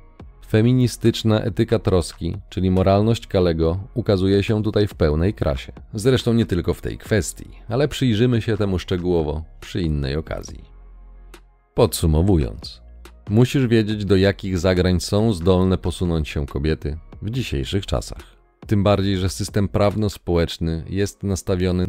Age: 40-59